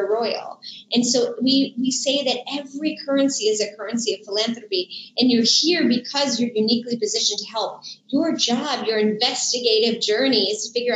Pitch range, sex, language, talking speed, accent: 220-275 Hz, female, English, 170 wpm, American